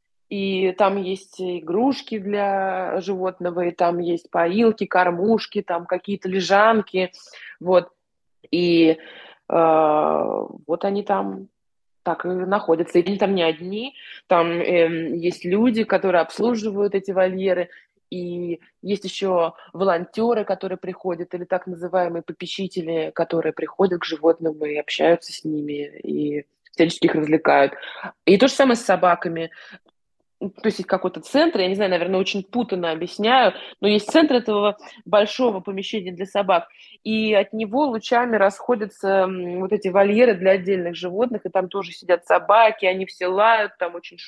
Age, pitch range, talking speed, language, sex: 20-39, 175-210 Hz, 140 wpm, Russian, female